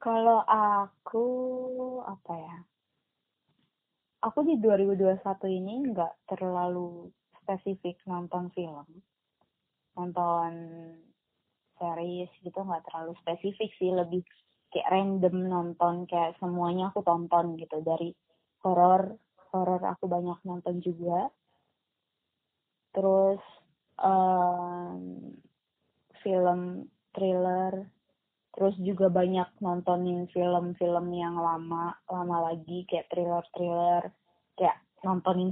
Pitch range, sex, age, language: 175-190 Hz, female, 20-39, Indonesian